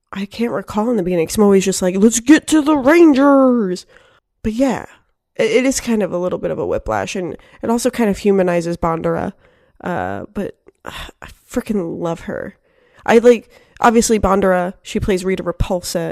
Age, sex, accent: 20-39, female, American